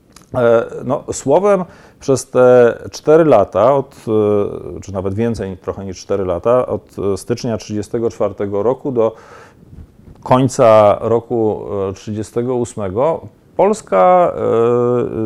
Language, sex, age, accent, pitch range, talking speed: Polish, male, 40-59, native, 105-130 Hz, 90 wpm